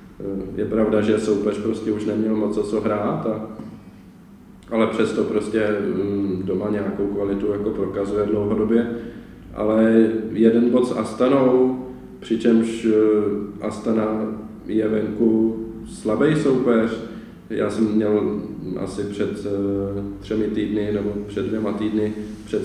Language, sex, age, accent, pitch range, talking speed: Czech, male, 20-39, native, 100-110 Hz, 110 wpm